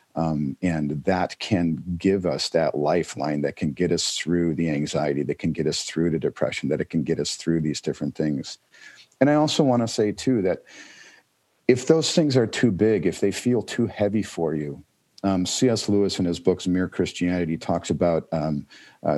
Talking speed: 200 wpm